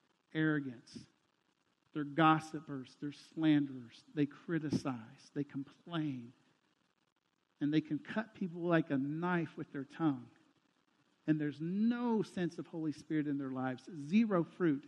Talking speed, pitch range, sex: 130 wpm, 140-165 Hz, male